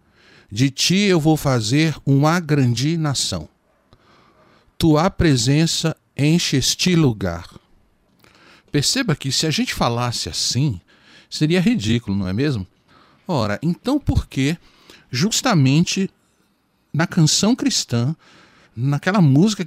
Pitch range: 115-165 Hz